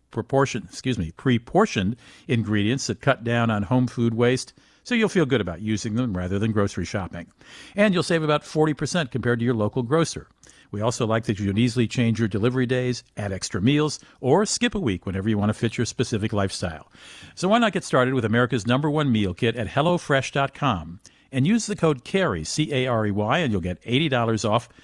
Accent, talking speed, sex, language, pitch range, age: American, 205 wpm, male, English, 110-140 Hz, 50-69